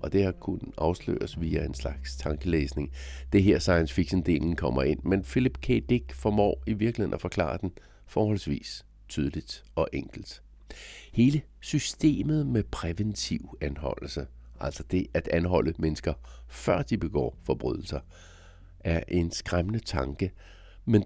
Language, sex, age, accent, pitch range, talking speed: Danish, male, 60-79, native, 80-105 Hz, 135 wpm